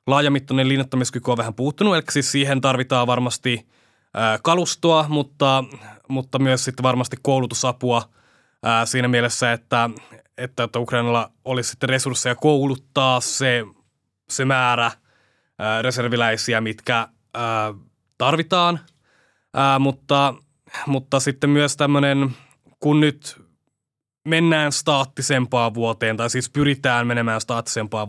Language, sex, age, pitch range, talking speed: English, male, 20-39, 120-135 Hz, 100 wpm